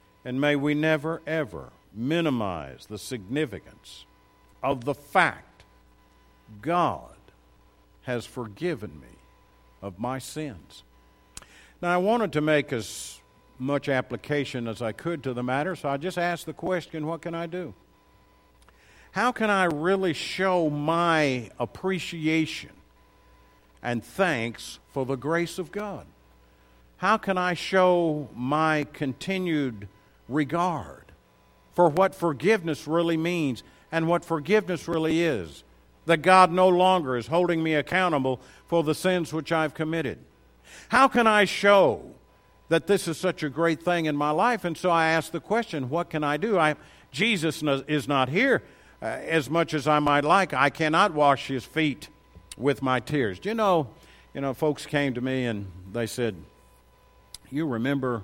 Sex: male